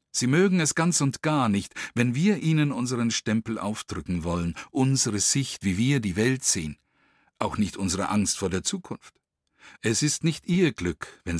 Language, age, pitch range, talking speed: German, 50-69, 95-130 Hz, 180 wpm